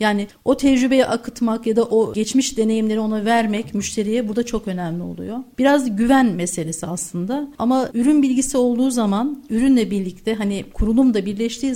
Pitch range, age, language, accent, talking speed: 200-255 Hz, 50-69, Turkish, native, 155 wpm